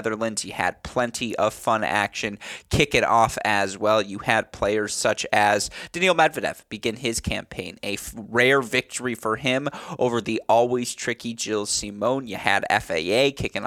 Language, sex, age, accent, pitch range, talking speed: English, male, 20-39, American, 105-130 Hz, 165 wpm